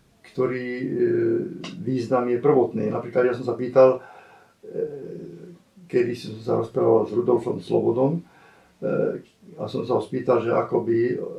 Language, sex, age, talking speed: Slovak, male, 50-69, 120 wpm